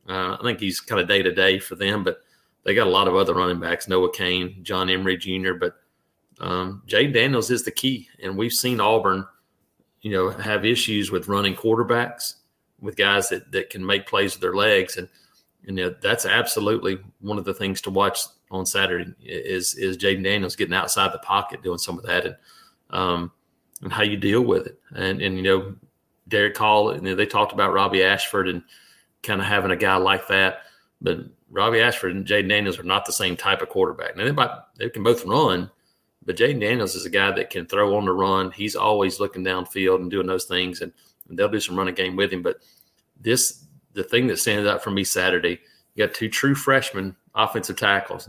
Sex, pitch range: male, 95-105 Hz